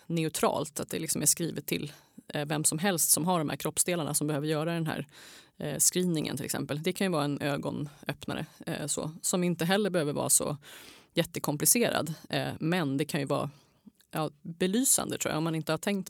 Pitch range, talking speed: 155-195 Hz, 190 wpm